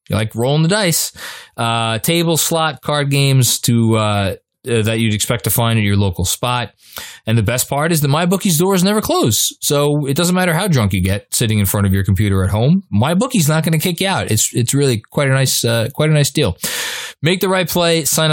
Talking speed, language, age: 235 wpm, English, 20-39